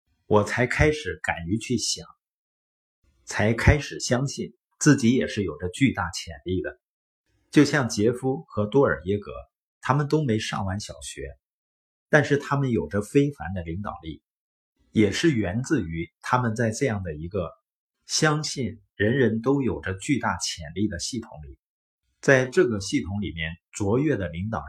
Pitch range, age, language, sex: 85-130 Hz, 50-69, Chinese, male